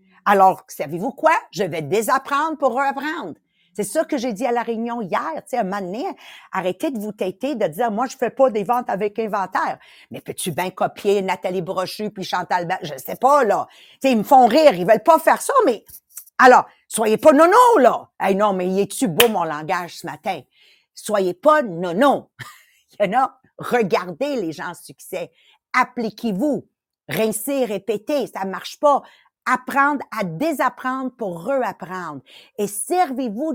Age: 50-69